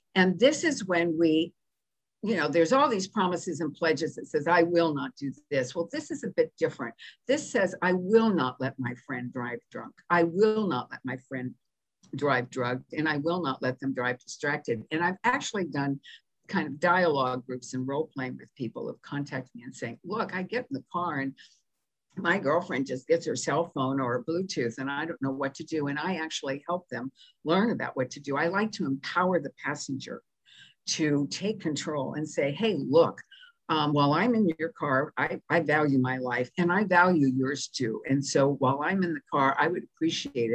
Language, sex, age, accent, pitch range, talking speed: English, female, 60-79, American, 135-180 Hz, 210 wpm